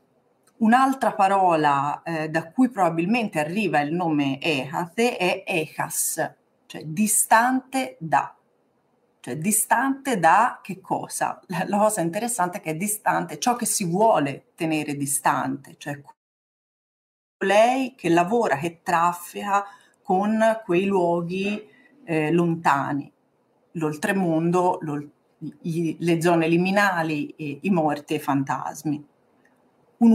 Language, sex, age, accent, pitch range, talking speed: Italian, female, 40-59, native, 160-210 Hz, 115 wpm